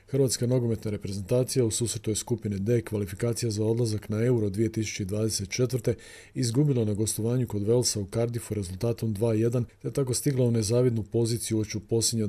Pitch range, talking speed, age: 105-120 Hz, 145 wpm, 40-59